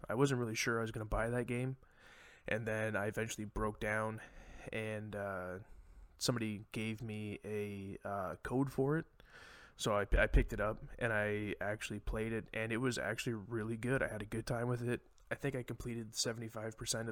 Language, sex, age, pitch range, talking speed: English, male, 20-39, 105-120 Hz, 195 wpm